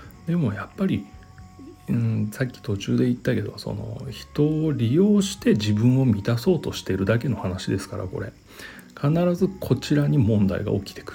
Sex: male